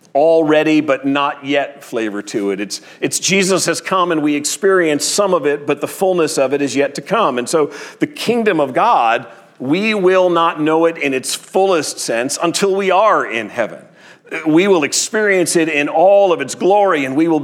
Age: 40-59